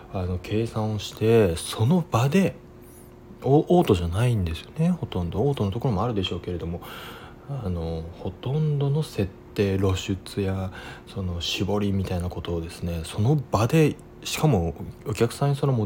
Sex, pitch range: male, 95-115 Hz